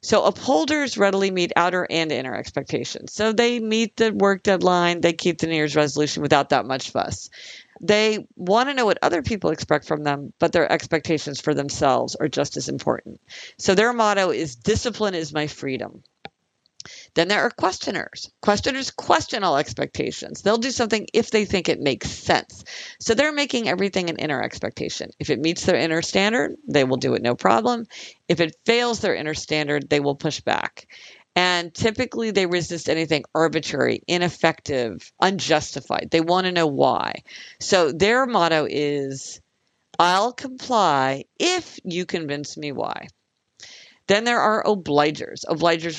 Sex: female